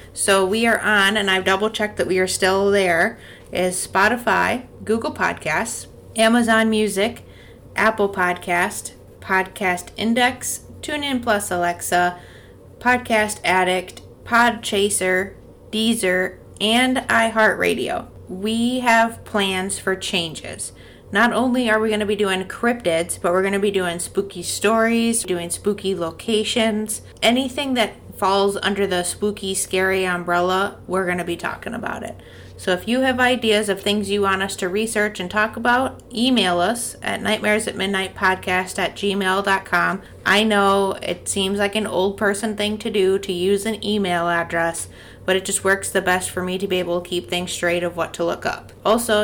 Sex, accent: female, American